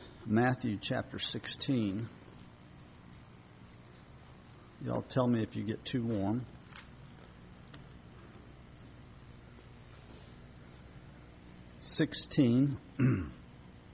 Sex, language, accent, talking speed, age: male, English, American, 50 wpm, 50-69